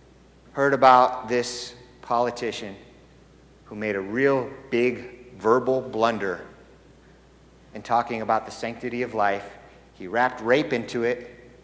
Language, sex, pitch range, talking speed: English, male, 120-185 Hz, 120 wpm